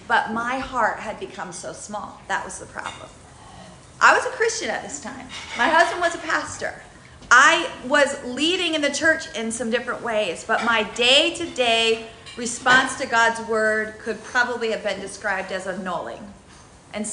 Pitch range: 205-260 Hz